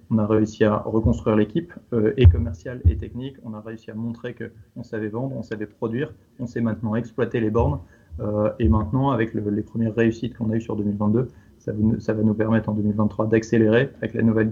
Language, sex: French, male